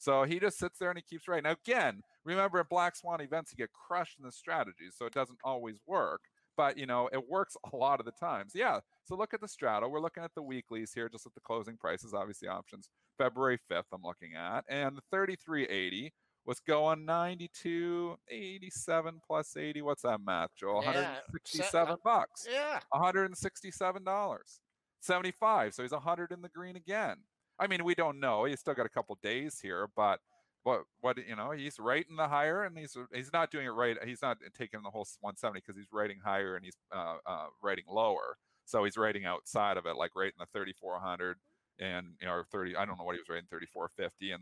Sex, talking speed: male, 210 wpm